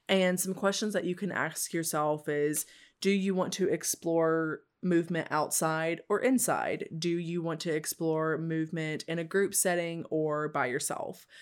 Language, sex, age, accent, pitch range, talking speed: English, female, 20-39, American, 155-185 Hz, 165 wpm